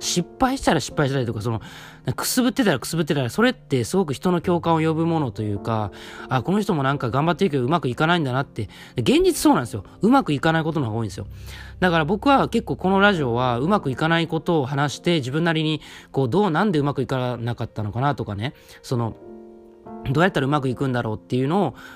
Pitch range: 120-190 Hz